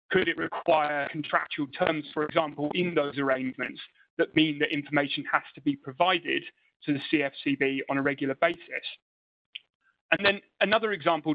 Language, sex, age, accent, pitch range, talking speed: English, male, 30-49, British, 140-190 Hz, 155 wpm